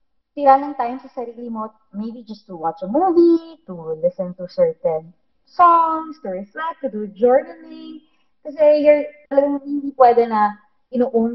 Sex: female